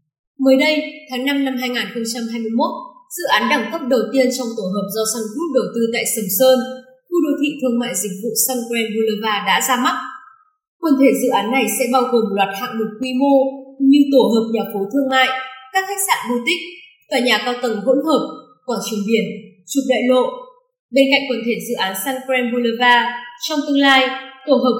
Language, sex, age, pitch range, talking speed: Vietnamese, female, 20-39, 225-270 Hz, 210 wpm